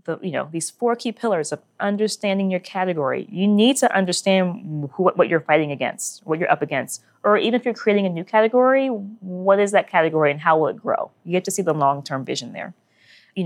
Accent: American